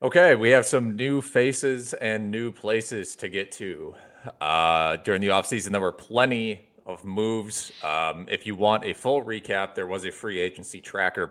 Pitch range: 95-120 Hz